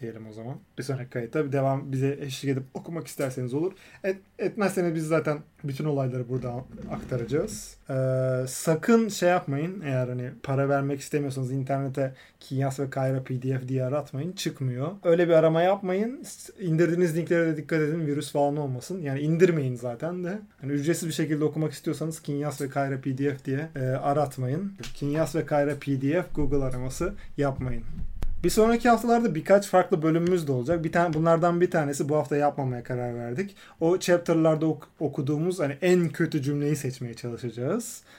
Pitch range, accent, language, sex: 135-170 Hz, native, Turkish, male